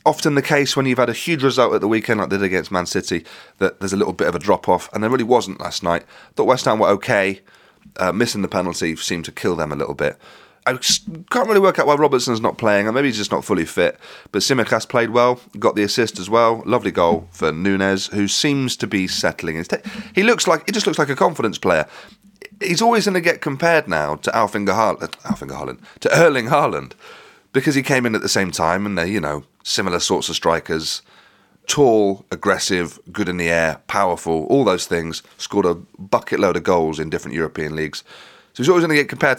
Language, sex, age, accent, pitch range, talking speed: English, male, 30-49, British, 95-145 Hz, 225 wpm